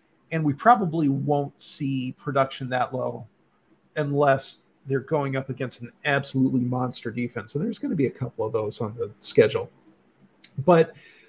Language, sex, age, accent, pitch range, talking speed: English, male, 40-59, American, 125-150 Hz, 160 wpm